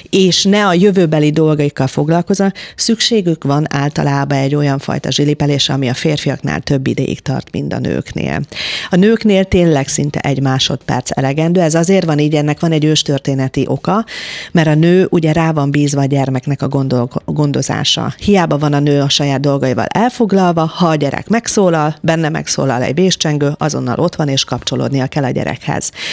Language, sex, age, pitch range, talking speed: Hungarian, female, 40-59, 145-190 Hz, 170 wpm